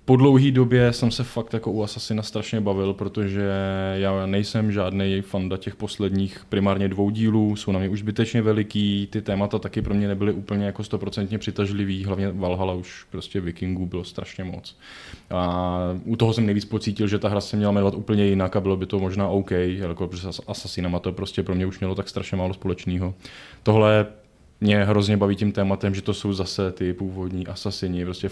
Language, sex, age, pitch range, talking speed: Czech, male, 20-39, 90-105 Hz, 195 wpm